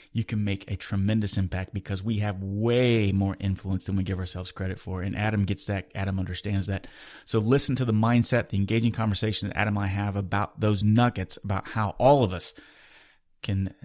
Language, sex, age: English, male, 30-49